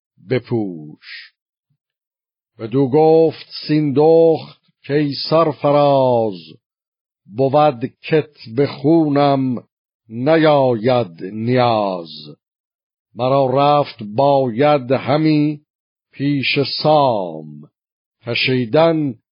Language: Persian